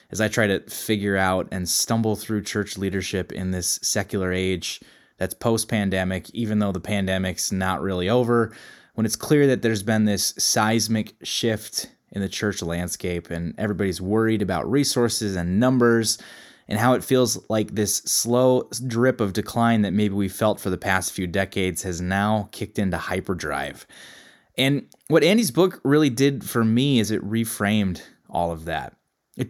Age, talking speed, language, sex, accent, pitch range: 20-39, 170 wpm, English, male, American, 95-125 Hz